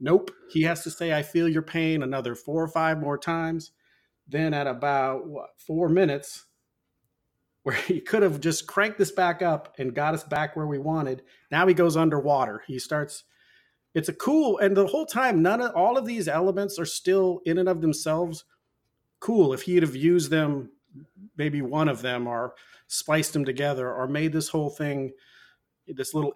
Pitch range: 140-185 Hz